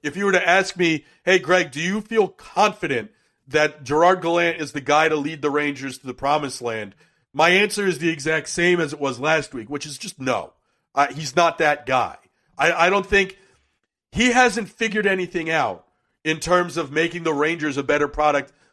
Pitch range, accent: 155-200 Hz, American